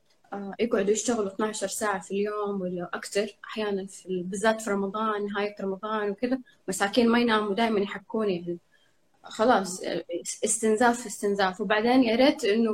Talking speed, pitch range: 135 wpm, 205-260 Hz